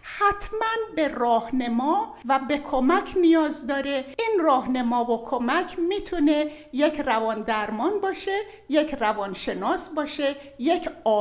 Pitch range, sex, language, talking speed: 240-350 Hz, female, Persian, 110 wpm